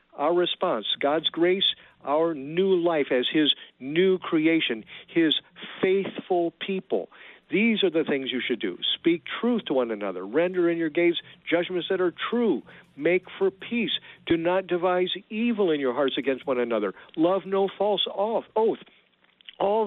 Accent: American